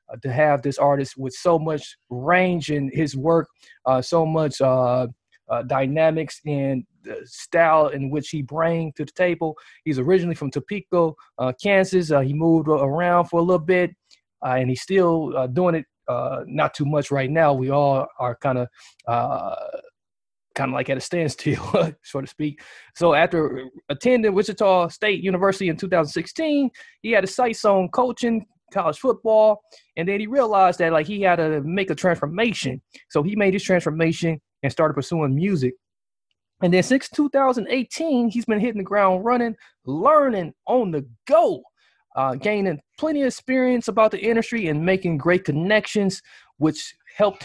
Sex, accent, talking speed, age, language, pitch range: male, American, 170 wpm, 20-39, English, 145-205 Hz